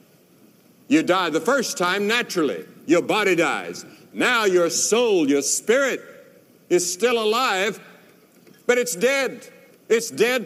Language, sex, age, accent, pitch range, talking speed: English, male, 60-79, American, 175-240 Hz, 125 wpm